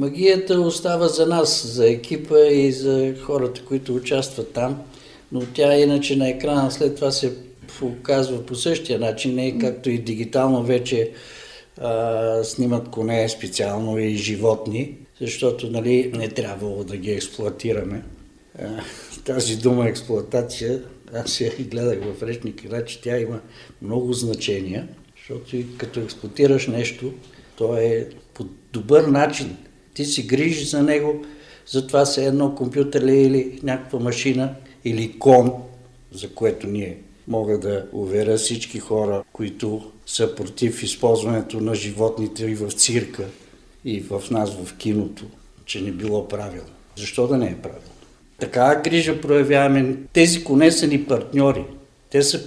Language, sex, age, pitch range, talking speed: Bulgarian, male, 60-79, 115-140 Hz, 140 wpm